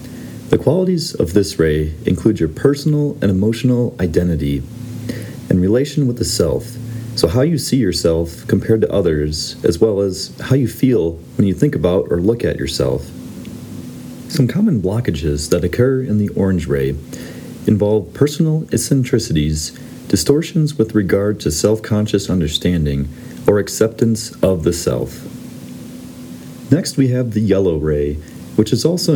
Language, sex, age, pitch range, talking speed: English, male, 40-59, 85-125 Hz, 145 wpm